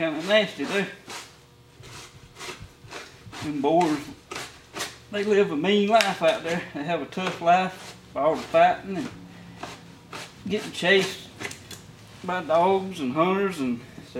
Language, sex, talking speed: English, male, 125 wpm